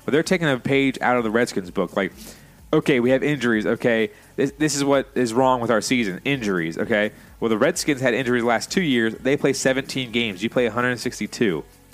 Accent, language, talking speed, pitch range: American, English, 220 wpm, 115-135 Hz